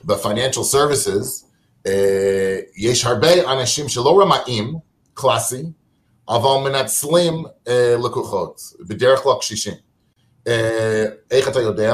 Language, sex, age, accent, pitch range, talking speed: Hebrew, male, 30-49, American, 120-170 Hz, 100 wpm